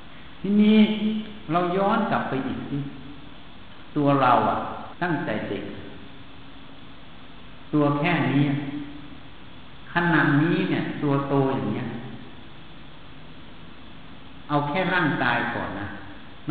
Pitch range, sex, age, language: 120-155 Hz, male, 60-79, Thai